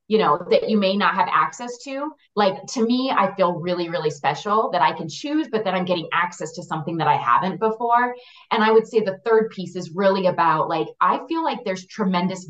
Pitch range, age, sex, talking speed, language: 165-220 Hz, 30-49, female, 230 wpm, English